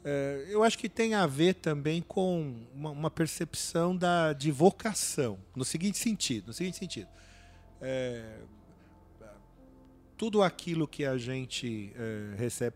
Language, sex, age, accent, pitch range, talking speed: English, male, 50-69, Brazilian, 120-195 Hz, 110 wpm